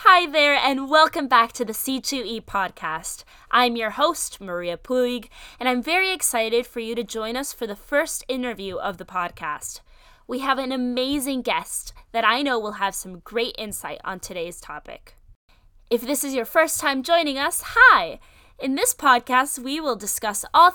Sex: female